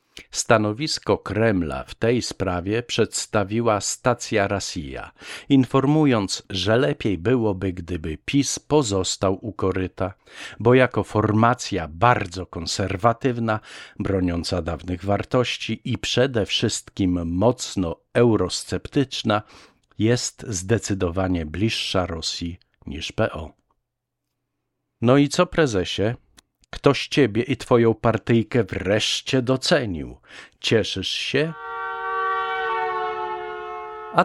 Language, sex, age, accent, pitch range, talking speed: Polish, male, 50-69, native, 90-120 Hz, 90 wpm